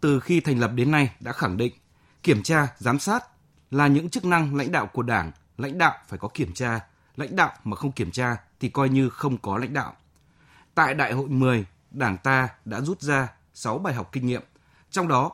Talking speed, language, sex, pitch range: 220 wpm, Vietnamese, male, 110-150 Hz